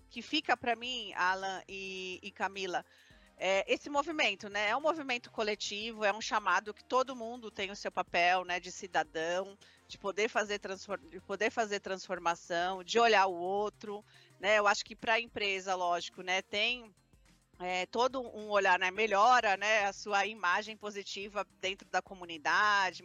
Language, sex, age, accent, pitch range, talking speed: Portuguese, female, 40-59, Brazilian, 185-225 Hz, 170 wpm